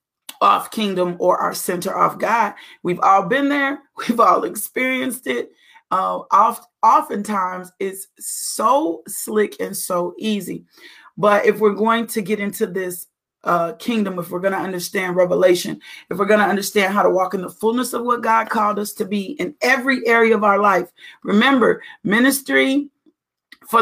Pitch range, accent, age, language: 190-225 Hz, American, 40-59, English